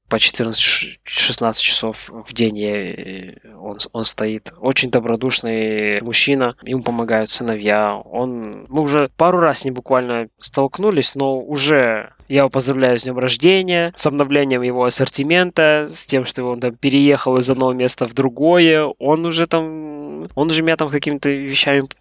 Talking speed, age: 155 wpm, 20-39